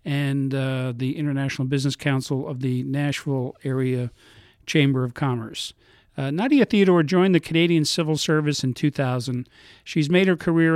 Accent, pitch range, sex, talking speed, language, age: American, 135-160 Hz, male, 150 wpm, English, 50-69